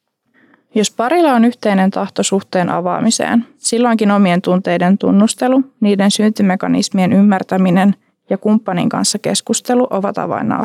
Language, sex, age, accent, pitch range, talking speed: Finnish, female, 20-39, native, 195-255 Hz, 115 wpm